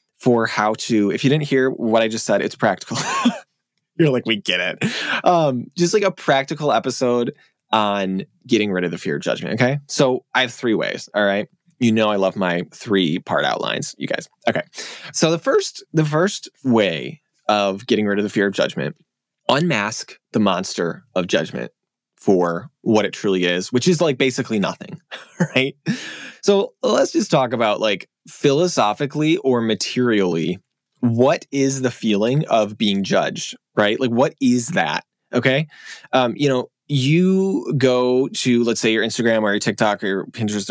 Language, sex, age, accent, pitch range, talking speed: English, male, 20-39, American, 110-140 Hz, 175 wpm